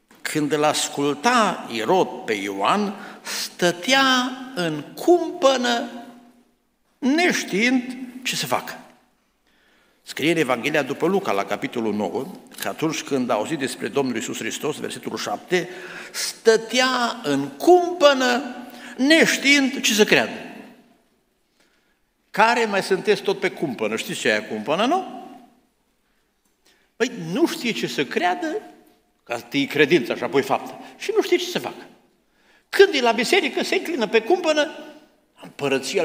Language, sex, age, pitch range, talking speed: Romanian, male, 60-79, 170-290 Hz, 125 wpm